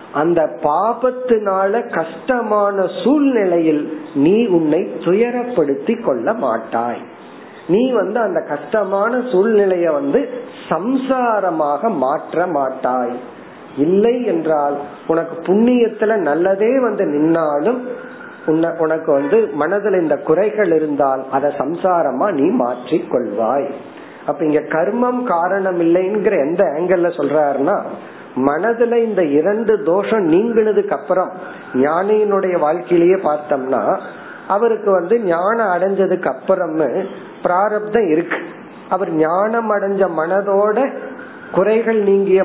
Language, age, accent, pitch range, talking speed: Tamil, 50-69, native, 160-220 Hz, 85 wpm